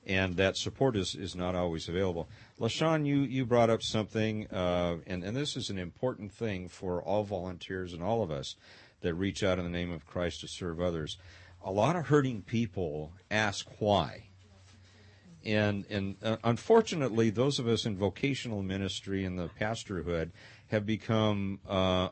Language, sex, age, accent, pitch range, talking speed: English, male, 50-69, American, 95-115 Hz, 170 wpm